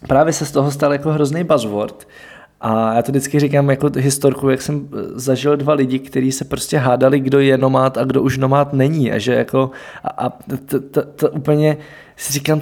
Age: 20-39